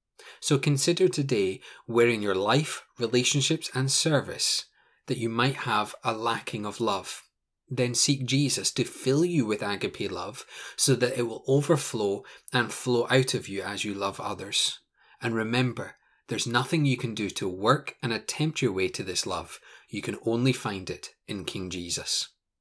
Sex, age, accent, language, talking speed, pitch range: male, 20-39, British, English, 170 wpm, 110-135 Hz